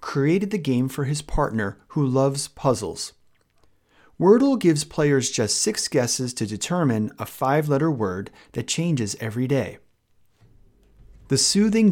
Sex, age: male, 30-49